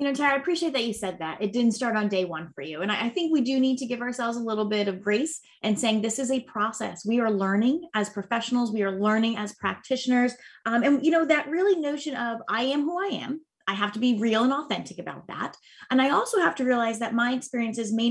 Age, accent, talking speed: 20-39, American, 265 wpm